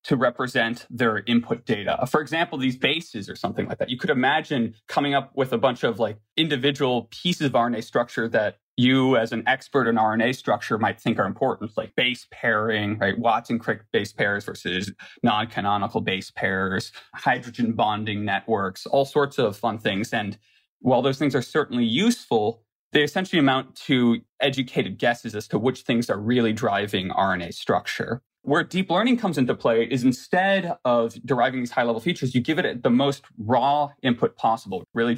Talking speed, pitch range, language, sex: 175 wpm, 115-145 Hz, English, male